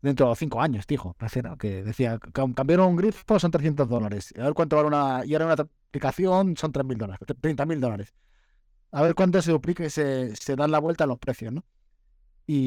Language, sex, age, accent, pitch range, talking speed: Spanish, male, 20-39, Spanish, 130-160 Hz, 210 wpm